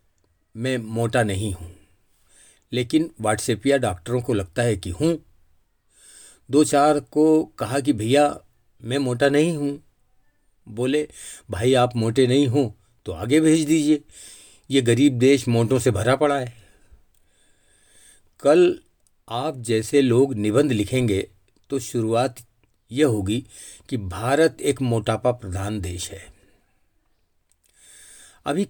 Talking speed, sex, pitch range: 120 wpm, male, 100-135 Hz